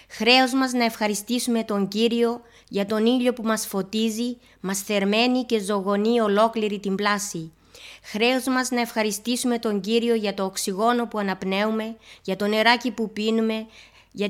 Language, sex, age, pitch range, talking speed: Greek, female, 20-39, 205-235 Hz, 150 wpm